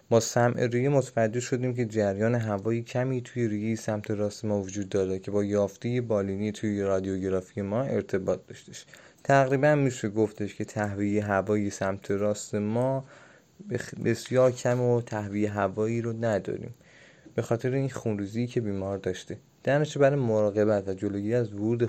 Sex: male